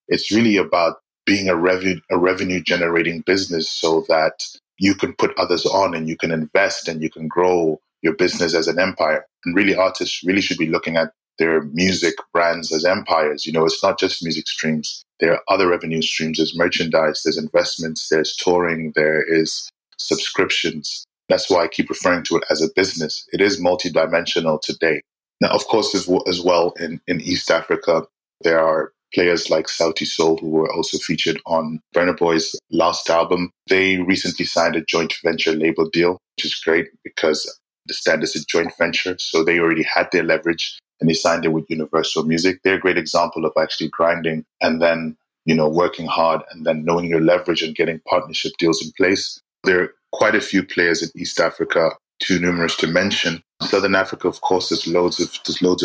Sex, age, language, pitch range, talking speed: male, 20-39, English, 80-90 Hz, 190 wpm